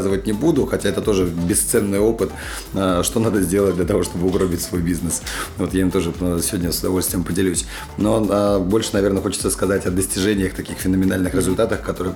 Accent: native